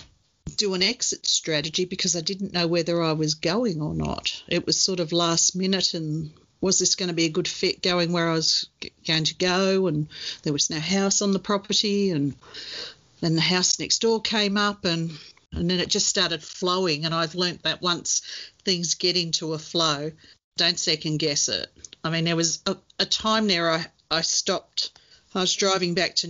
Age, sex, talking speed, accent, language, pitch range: 50-69, female, 205 wpm, Australian, English, 160-195 Hz